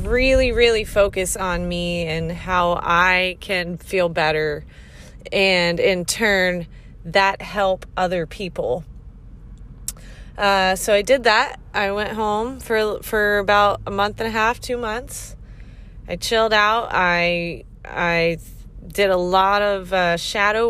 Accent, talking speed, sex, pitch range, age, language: American, 135 wpm, female, 170-205 Hz, 20-39, English